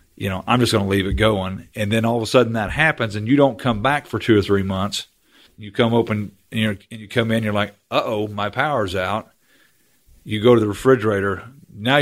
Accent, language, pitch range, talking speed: American, English, 95-115 Hz, 250 wpm